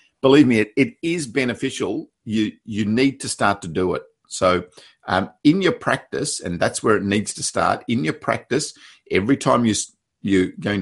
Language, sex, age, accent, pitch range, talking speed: English, male, 50-69, Australian, 90-130 Hz, 190 wpm